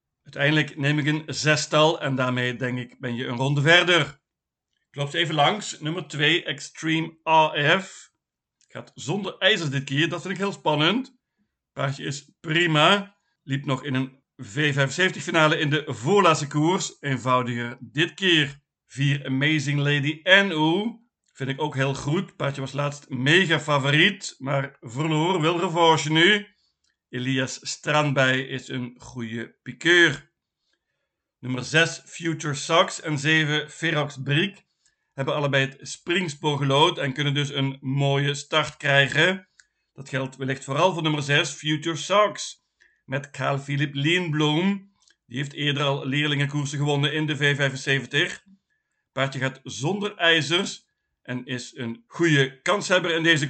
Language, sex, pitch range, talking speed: Dutch, male, 135-165 Hz, 140 wpm